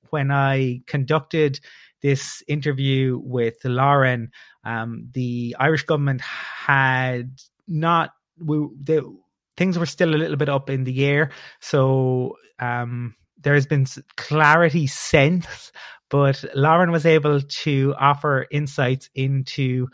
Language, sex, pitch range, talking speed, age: English, male, 125-145 Hz, 115 wpm, 30-49